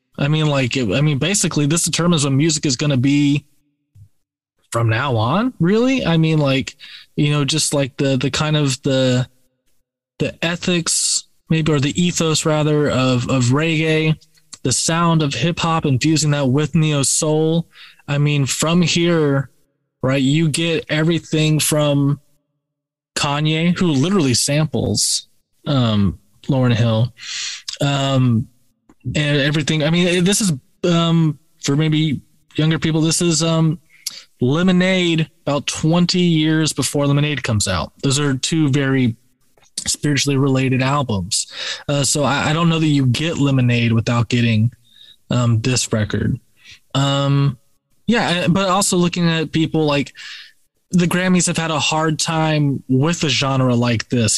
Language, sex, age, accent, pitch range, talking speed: English, male, 20-39, American, 130-160 Hz, 145 wpm